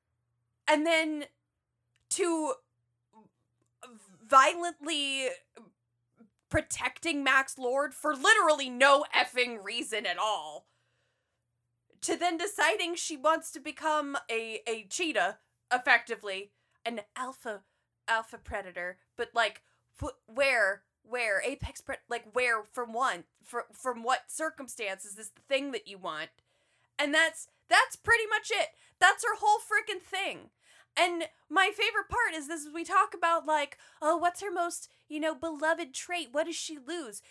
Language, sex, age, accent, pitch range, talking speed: English, female, 20-39, American, 240-345 Hz, 135 wpm